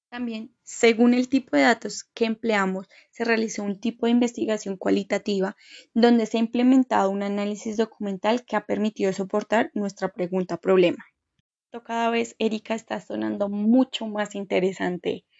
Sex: female